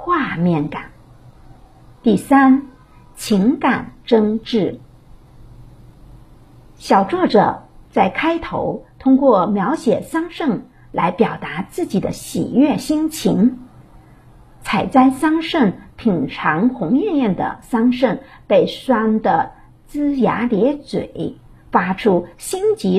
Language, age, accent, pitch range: Chinese, 50-69, American, 210-280 Hz